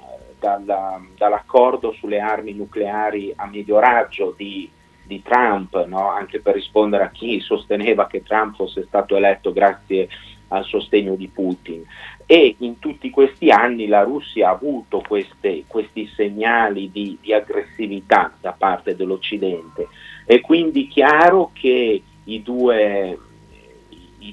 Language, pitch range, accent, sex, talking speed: Italian, 105-145 Hz, native, male, 125 wpm